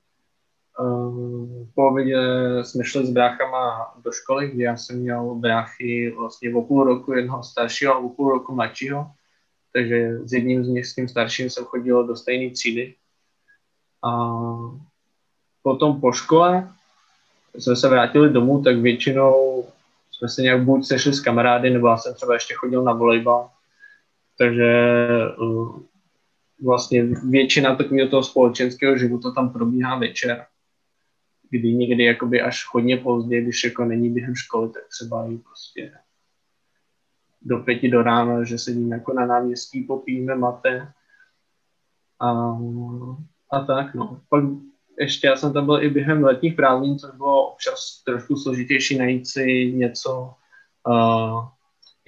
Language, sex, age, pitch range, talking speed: Czech, male, 20-39, 120-135 Hz, 135 wpm